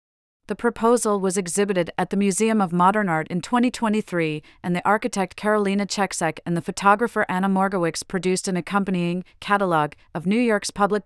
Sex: female